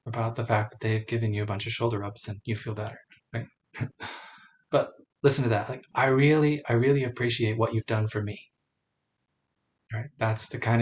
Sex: male